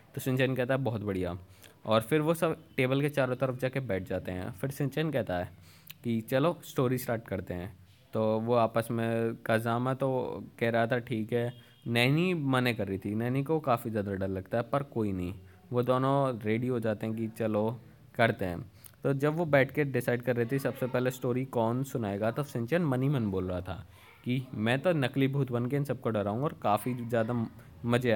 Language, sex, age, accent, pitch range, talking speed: Hindi, male, 20-39, native, 115-145 Hz, 205 wpm